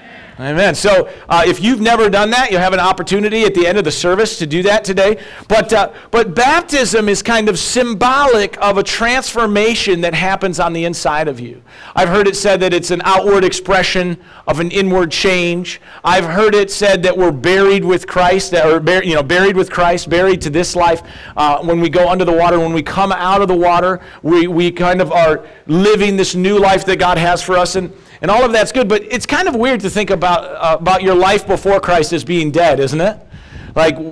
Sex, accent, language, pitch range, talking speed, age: male, American, English, 170-200 Hz, 225 wpm, 40-59